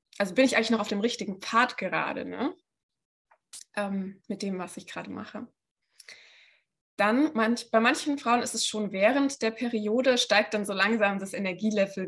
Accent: German